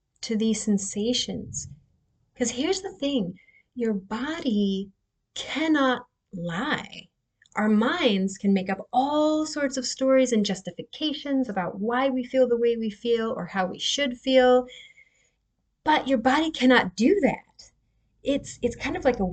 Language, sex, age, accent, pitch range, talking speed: English, female, 30-49, American, 190-255 Hz, 145 wpm